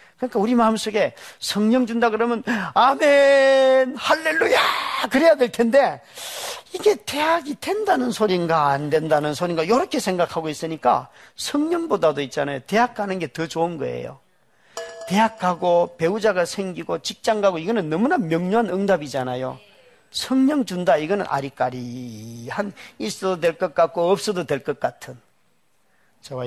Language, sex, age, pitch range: Korean, male, 40-59, 140-215 Hz